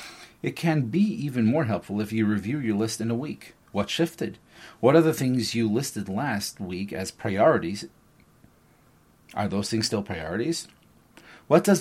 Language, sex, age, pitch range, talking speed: English, male, 40-59, 100-125 Hz, 170 wpm